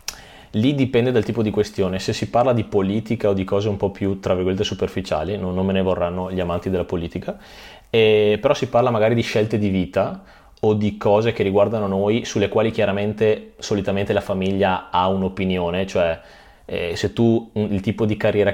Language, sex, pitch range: Italian, male, 95-105 Hz